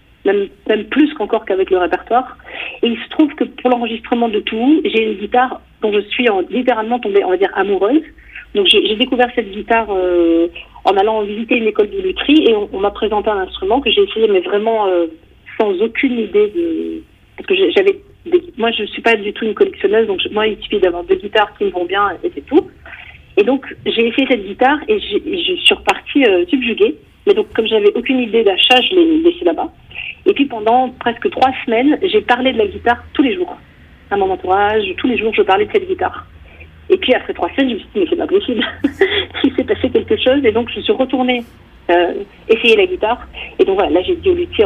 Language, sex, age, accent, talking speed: French, female, 40-59, French, 230 wpm